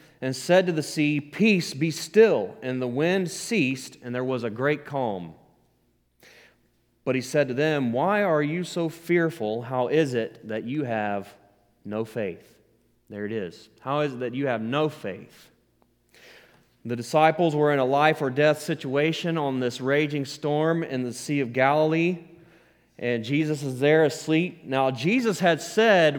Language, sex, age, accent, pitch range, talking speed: English, male, 30-49, American, 130-165 Hz, 170 wpm